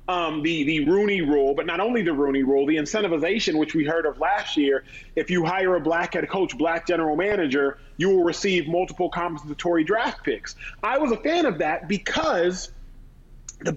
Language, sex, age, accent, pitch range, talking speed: English, male, 30-49, American, 170-235 Hz, 190 wpm